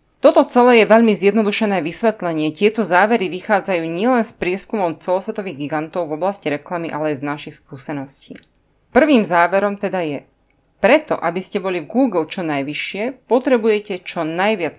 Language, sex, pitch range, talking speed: Slovak, female, 160-230 Hz, 150 wpm